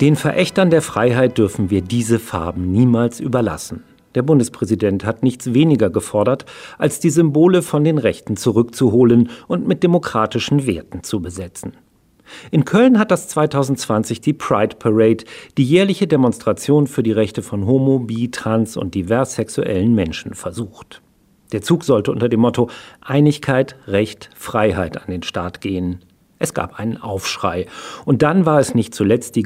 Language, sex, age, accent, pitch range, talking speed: German, male, 40-59, German, 110-145 Hz, 155 wpm